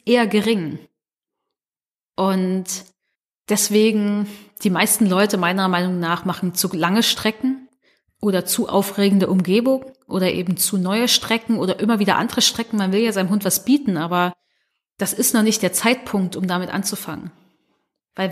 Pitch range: 185-230 Hz